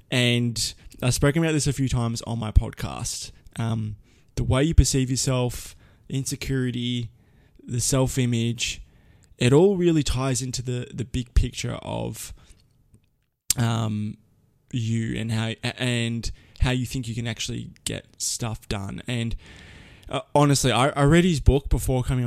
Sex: male